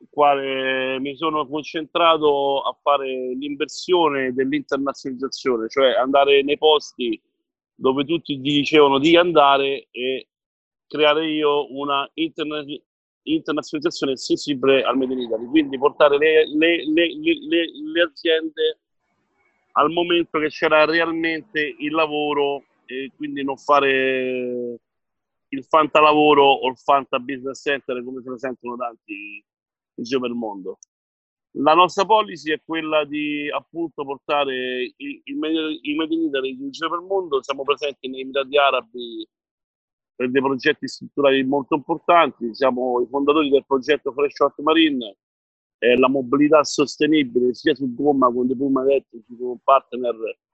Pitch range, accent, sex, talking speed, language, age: 135-160 Hz, native, male, 130 wpm, Italian, 40-59